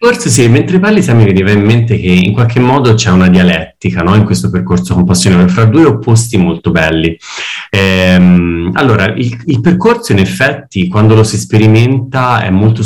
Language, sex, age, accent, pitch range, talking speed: Italian, male, 30-49, native, 90-115 Hz, 175 wpm